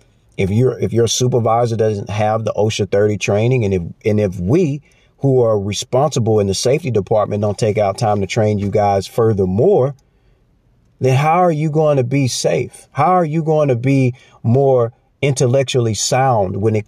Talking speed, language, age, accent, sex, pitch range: 180 wpm, English, 40-59, American, male, 100-130 Hz